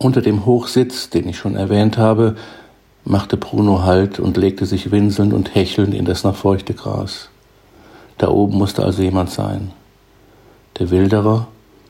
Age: 60-79